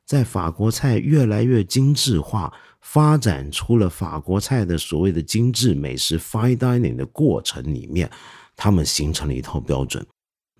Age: 50-69